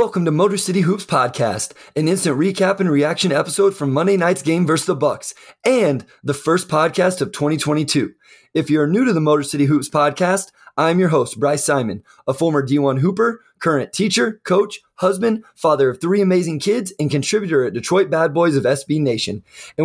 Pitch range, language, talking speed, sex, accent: 140-185 Hz, English, 185 wpm, male, American